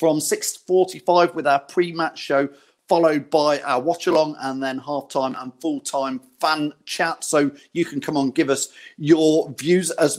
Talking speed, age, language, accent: 160 wpm, 40-59, English, British